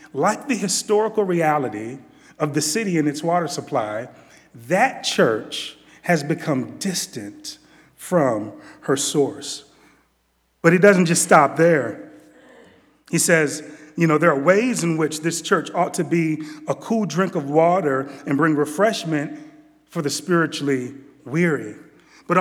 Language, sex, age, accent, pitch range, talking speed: English, male, 30-49, American, 135-175 Hz, 140 wpm